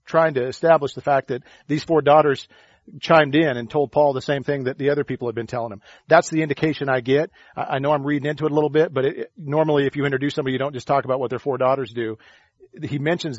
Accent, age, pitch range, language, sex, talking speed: American, 40-59, 130-155 Hz, English, male, 255 wpm